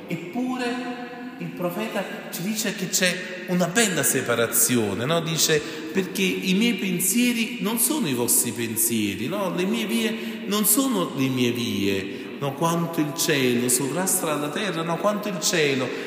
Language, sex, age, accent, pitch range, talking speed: Italian, male, 40-59, native, 125-200 Hz, 155 wpm